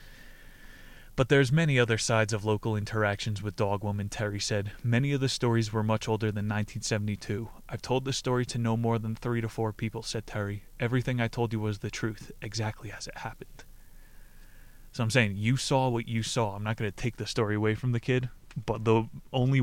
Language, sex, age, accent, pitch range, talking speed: English, male, 20-39, American, 105-120 Hz, 210 wpm